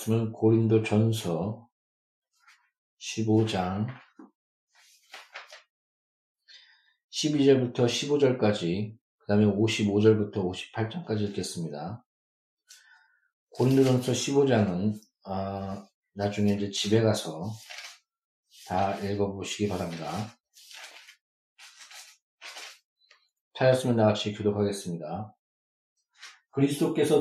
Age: 40-59